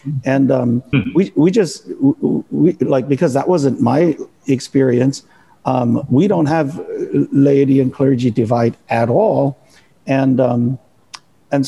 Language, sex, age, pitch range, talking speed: English, male, 50-69, 125-150 Hz, 135 wpm